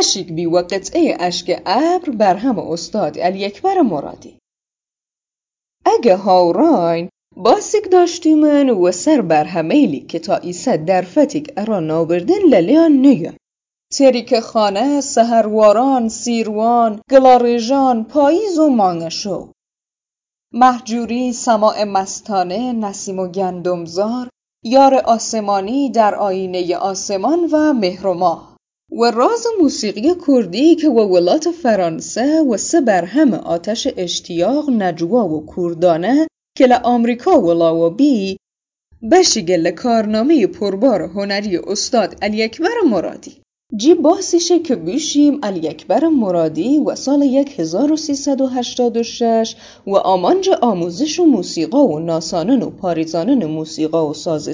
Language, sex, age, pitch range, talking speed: Persian, female, 30-49, 180-285 Hz, 105 wpm